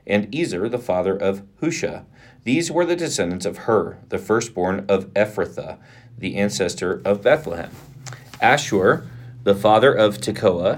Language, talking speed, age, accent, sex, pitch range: English, 140 wpm, 40-59, American, male, 95-120 Hz